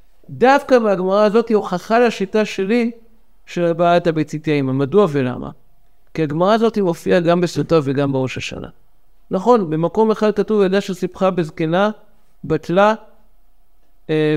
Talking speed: 130 wpm